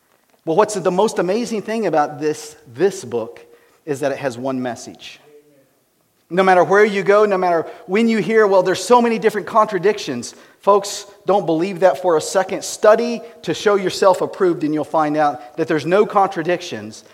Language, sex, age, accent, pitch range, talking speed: English, male, 40-59, American, 140-190 Hz, 180 wpm